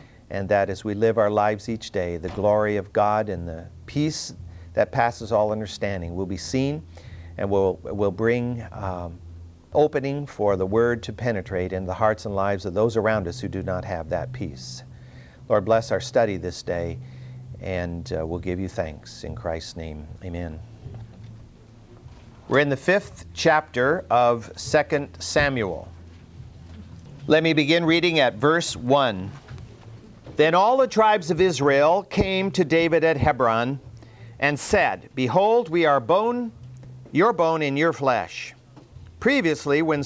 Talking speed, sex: 155 wpm, male